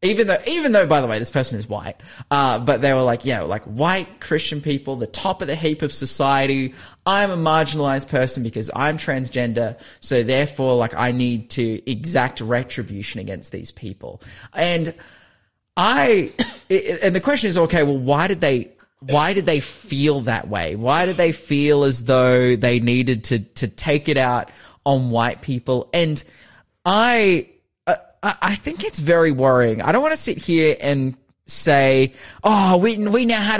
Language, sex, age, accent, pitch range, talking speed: English, male, 20-39, Australian, 125-165 Hz, 175 wpm